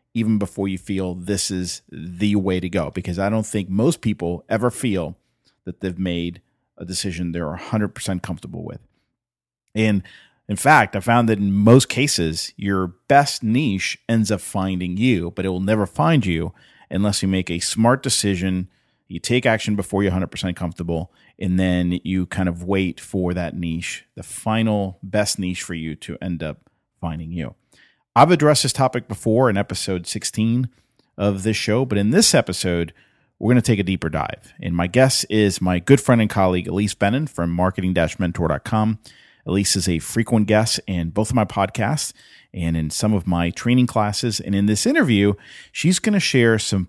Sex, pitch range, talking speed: male, 90-115 Hz, 185 wpm